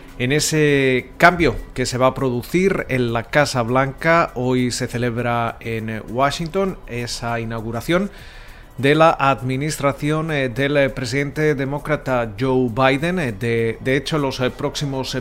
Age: 30-49